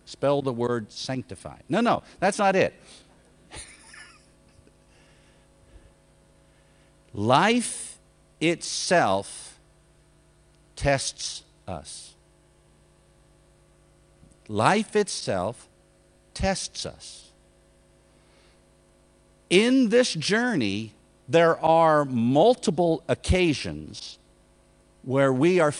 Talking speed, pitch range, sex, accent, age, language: 65 wpm, 105-165 Hz, male, American, 50-69, English